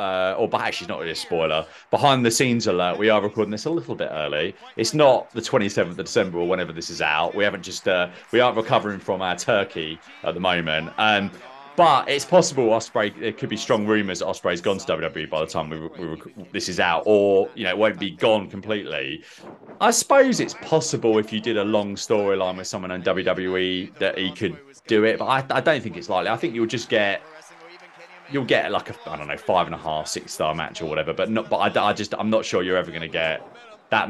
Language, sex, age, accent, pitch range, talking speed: English, male, 30-49, British, 90-115 Hz, 240 wpm